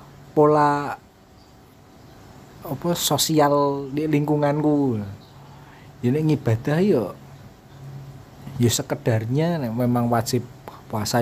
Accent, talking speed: native, 75 wpm